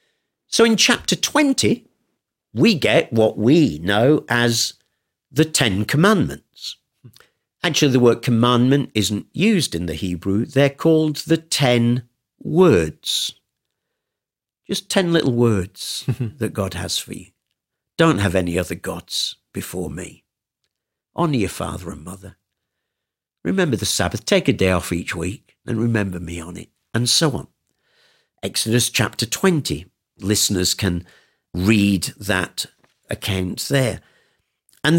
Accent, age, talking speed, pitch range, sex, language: British, 50-69, 130 wpm, 100-155 Hz, male, English